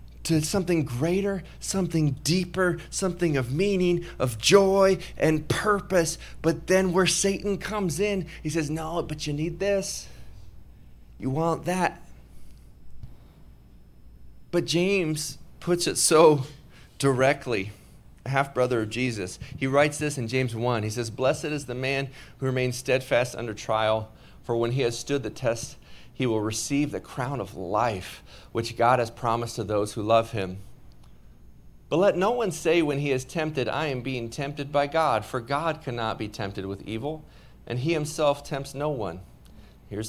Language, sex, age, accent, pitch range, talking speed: English, male, 30-49, American, 110-155 Hz, 160 wpm